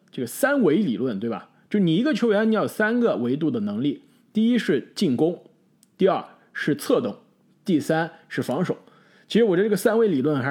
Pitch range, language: 140-215 Hz, Chinese